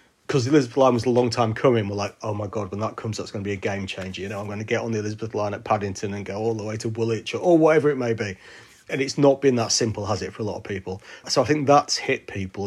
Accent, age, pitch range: British, 30-49, 105-130 Hz